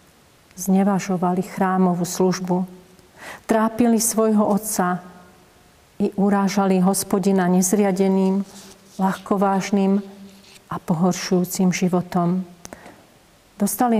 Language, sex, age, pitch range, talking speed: Slovak, female, 40-59, 180-205 Hz, 65 wpm